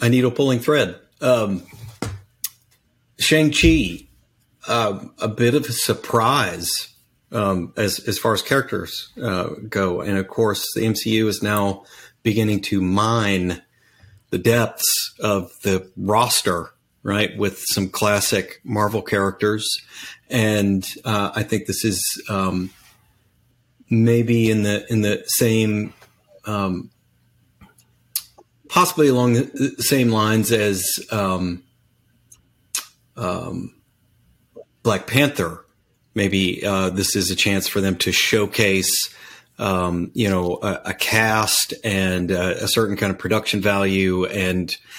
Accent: American